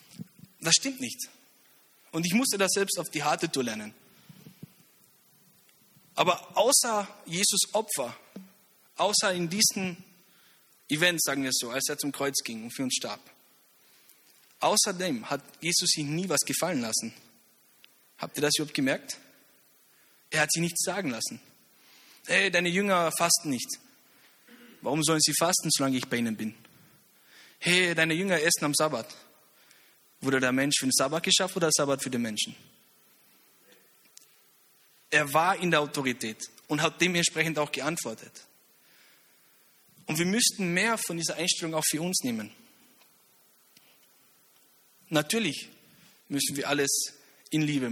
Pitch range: 135-180 Hz